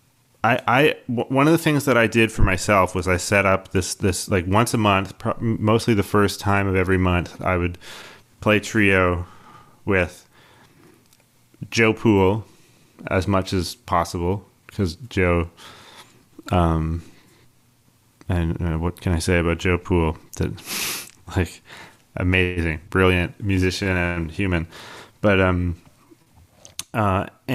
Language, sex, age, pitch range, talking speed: English, male, 20-39, 90-110 Hz, 135 wpm